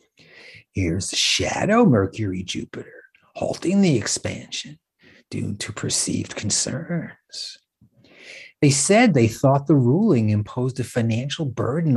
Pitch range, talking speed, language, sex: 105-165 Hz, 105 wpm, English, male